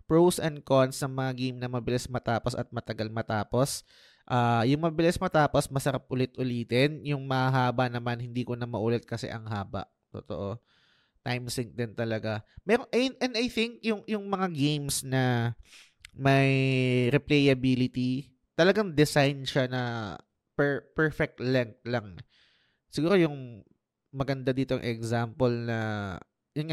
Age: 20-39